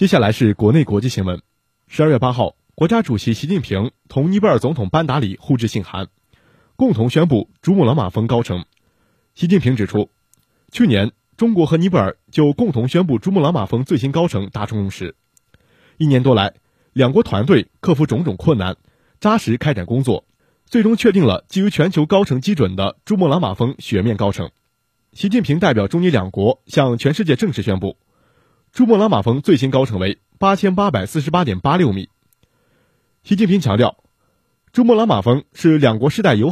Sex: male